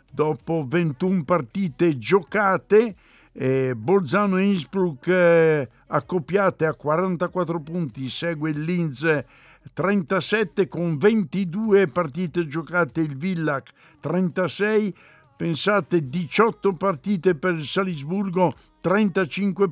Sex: male